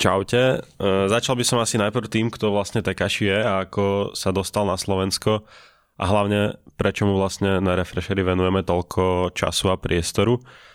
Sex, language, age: male, Slovak, 20-39